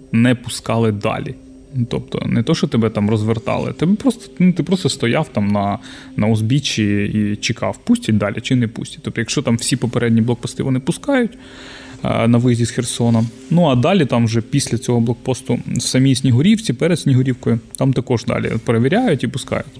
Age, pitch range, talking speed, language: 20-39, 115-140 Hz, 175 wpm, Ukrainian